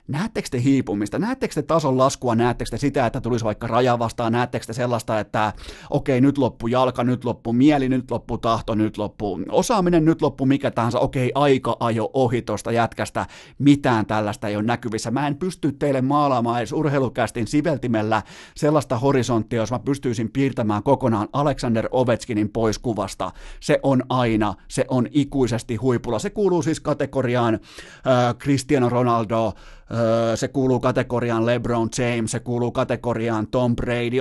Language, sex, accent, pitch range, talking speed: Finnish, male, native, 115-140 Hz, 160 wpm